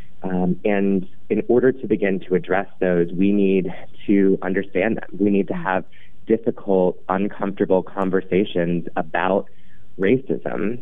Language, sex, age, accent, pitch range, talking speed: English, male, 30-49, American, 90-105 Hz, 130 wpm